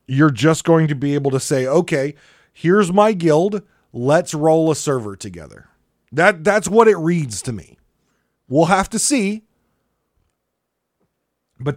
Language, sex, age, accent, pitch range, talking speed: English, male, 30-49, American, 115-165 Hz, 150 wpm